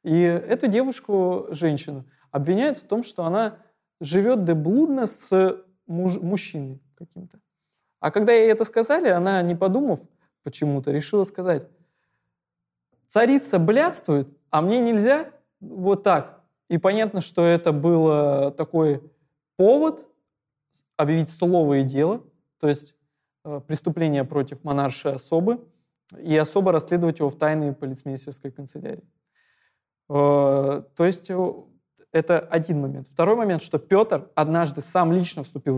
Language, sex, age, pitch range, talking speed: Russian, male, 20-39, 145-185 Hz, 115 wpm